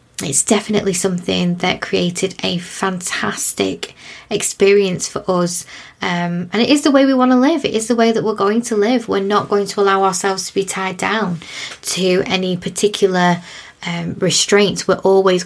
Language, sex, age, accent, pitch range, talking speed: English, female, 20-39, British, 180-210 Hz, 180 wpm